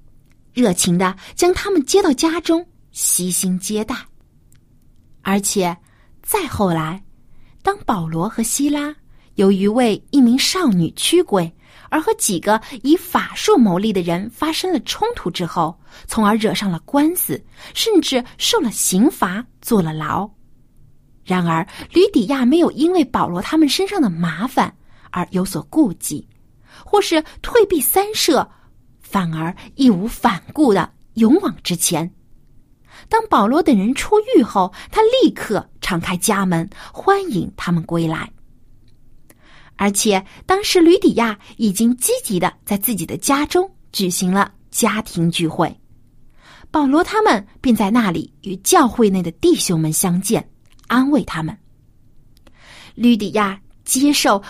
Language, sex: Chinese, female